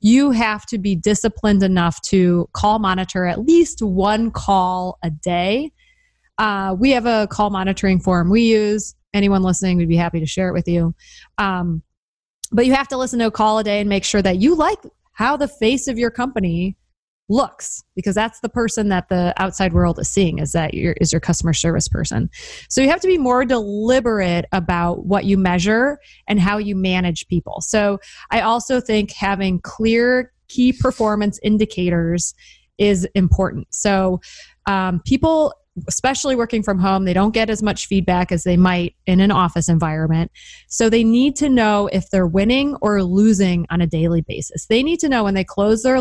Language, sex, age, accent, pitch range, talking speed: English, female, 20-39, American, 180-225 Hz, 190 wpm